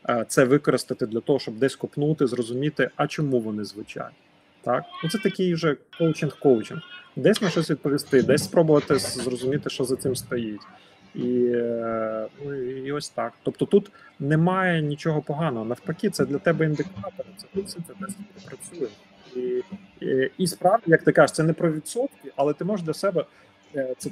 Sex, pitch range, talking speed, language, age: male, 130-165 Hz, 160 wpm, Ukrainian, 30-49